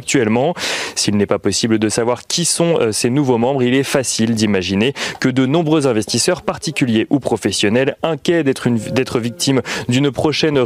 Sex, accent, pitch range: male, French, 115-145 Hz